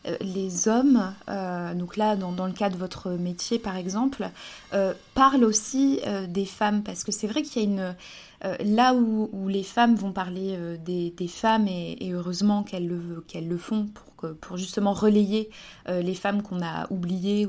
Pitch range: 185-220 Hz